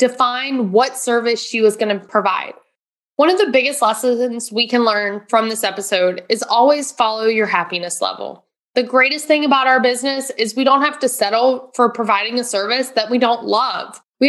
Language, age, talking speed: English, 20-39, 195 wpm